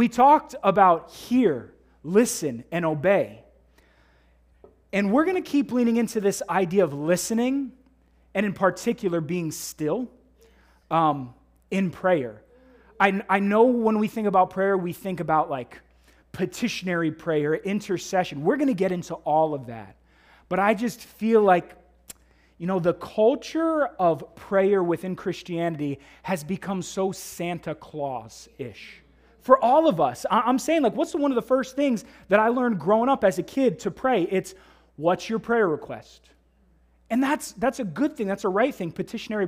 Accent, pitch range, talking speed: American, 165-220 Hz, 160 wpm